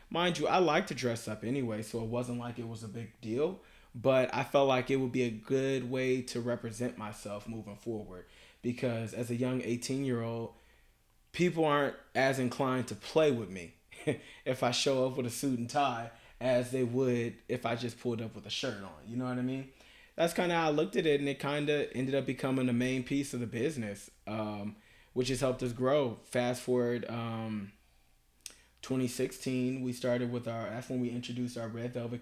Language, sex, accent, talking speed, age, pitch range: English, male, American, 210 wpm, 20-39, 115-130 Hz